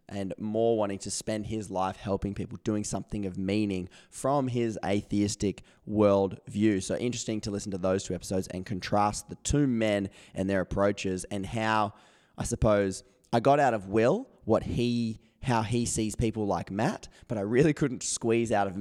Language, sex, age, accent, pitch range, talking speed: English, male, 20-39, Australian, 95-110 Hz, 185 wpm